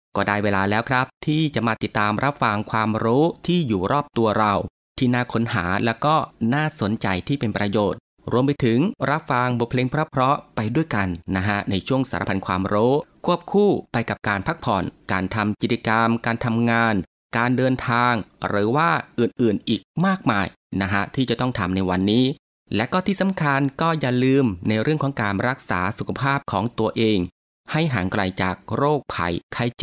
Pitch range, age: 100-140 Hz, 30-49